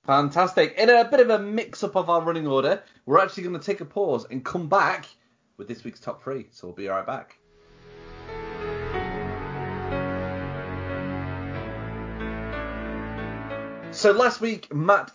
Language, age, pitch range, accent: English, 30-49, 110-160 Hz, British